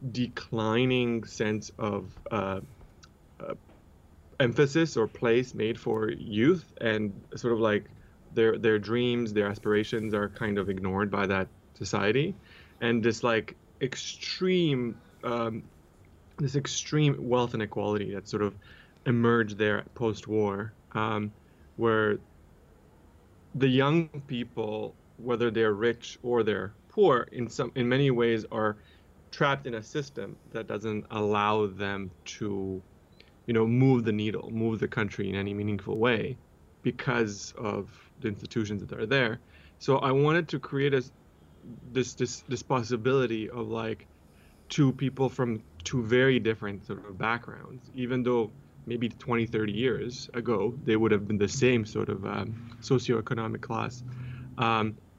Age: 20-39